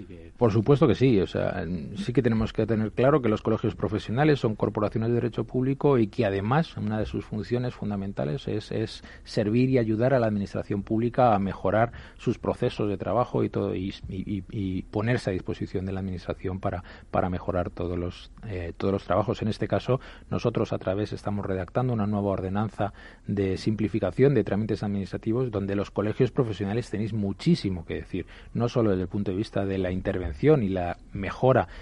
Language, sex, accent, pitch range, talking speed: Spanish, male, Spanish, 95-115 Hz, 190 wpm